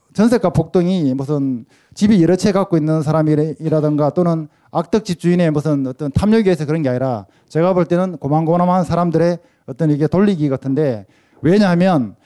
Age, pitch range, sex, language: 20-39, 150-180 Hz, male, Korean